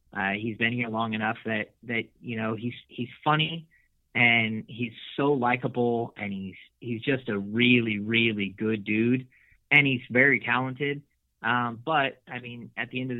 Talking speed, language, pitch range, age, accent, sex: 175 wpm, English, 110-125 Hz, 30-49, American, male